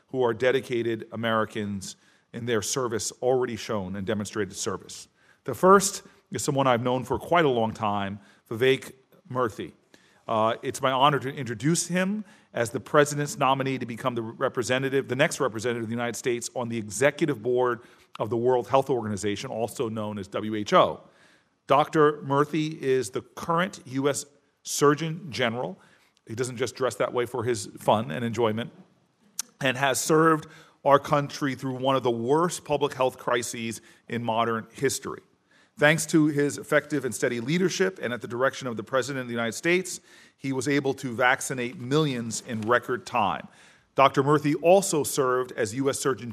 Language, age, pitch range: English, 40-59, 115-145 Hz